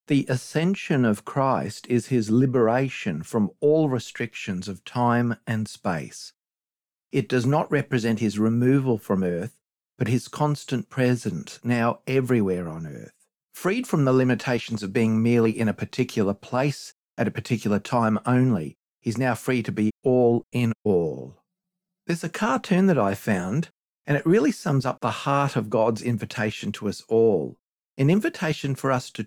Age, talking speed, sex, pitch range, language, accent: 50-69, 160 wpm, male, 115-140 Hz, English, Australian